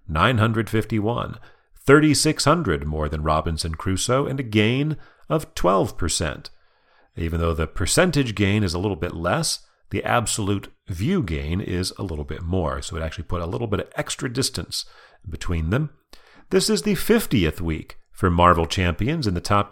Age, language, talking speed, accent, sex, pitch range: 40-59, English, 160 wpm, American, male, 85-130 Hz